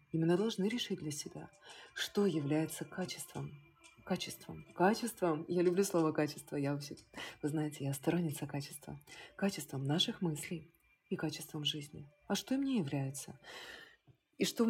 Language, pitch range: Russian, 150-185 Hz